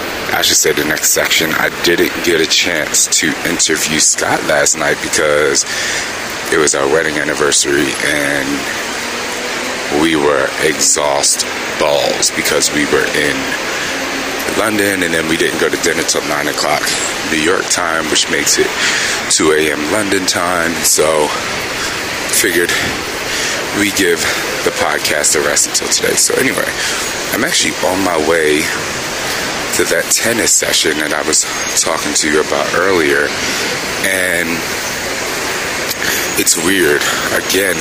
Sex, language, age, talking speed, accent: male, English, 30-49, 135 wpm, American